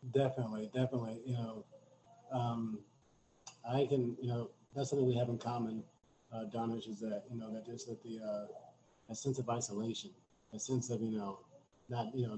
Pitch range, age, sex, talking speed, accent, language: 110-130 Hz, 40-59, male, 165 wpm, American, English